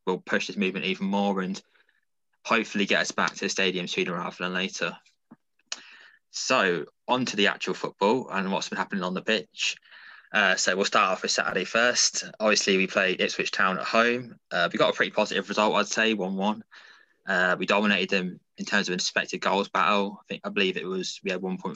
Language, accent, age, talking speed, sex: English, British, 20-39, 215 wpm, male